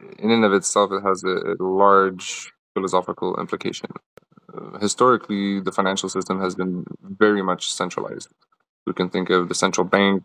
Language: English